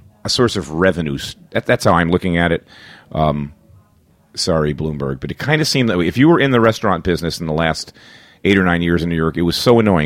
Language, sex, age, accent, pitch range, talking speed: English, male, 40-59, American, 85-115 Hz, 240 wpm